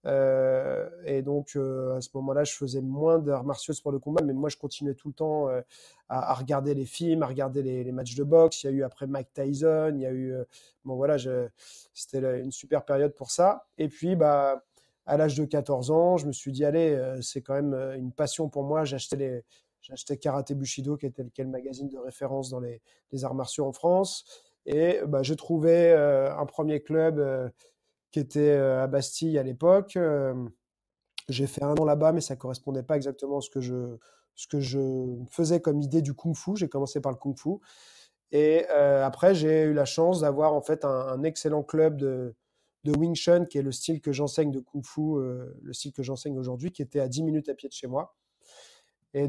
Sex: male